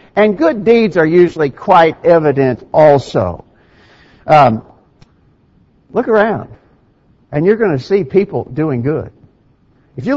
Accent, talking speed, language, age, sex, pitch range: American, 125 wpm, English, 60-79, male, 125-210 Hz